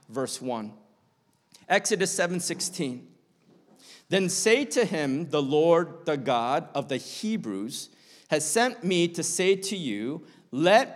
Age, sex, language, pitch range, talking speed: 50-69, male, English, 150-195 Hz, 125 wpm